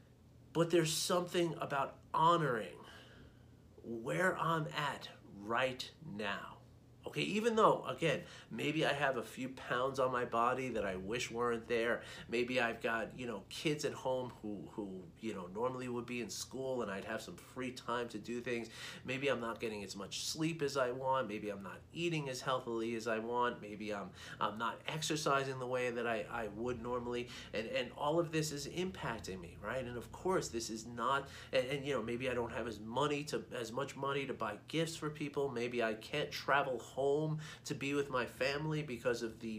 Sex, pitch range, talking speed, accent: male, 120-150 Hz, 200 wpm, American